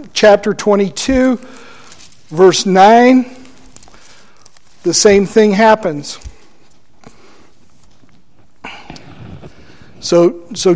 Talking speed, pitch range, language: 55 wpm, 190-235 Hz, English